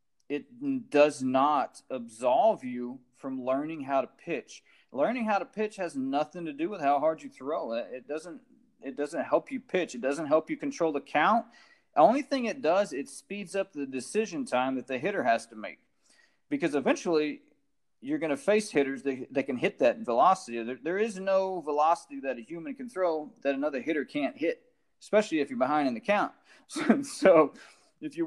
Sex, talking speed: male, 195 wpm